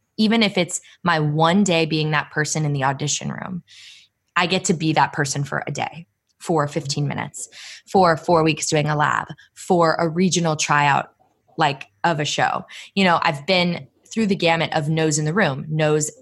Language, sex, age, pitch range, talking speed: English, female, 20-39, 155-210 Hz, 190 wpm